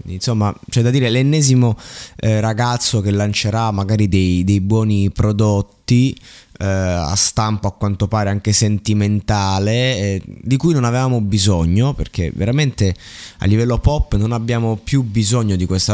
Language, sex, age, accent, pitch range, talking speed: Italian, male, 20-39, native, 95-120 Hz, 145 wpm